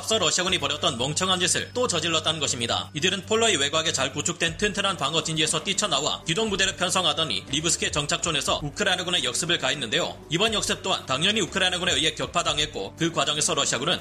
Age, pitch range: 30-49, 155-195 Hz